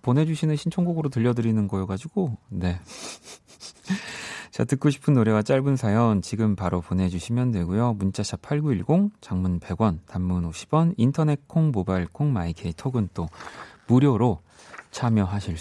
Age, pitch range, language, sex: 30-49, 95-145 Hz, Korean, male